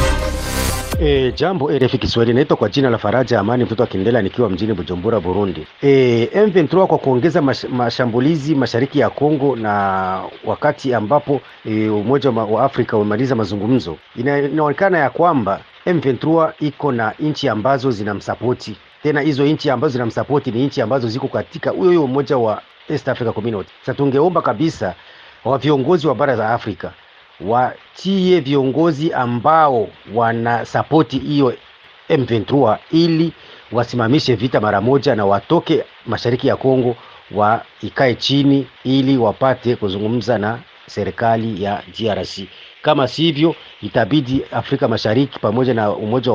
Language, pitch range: Swahili, 110-140 Hz